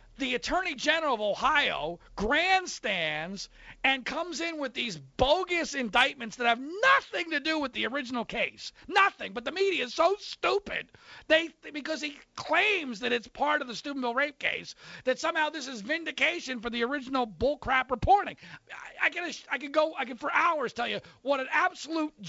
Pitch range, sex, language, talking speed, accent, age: 225-305 Hz, male, English, 180 wpm, American, 40-59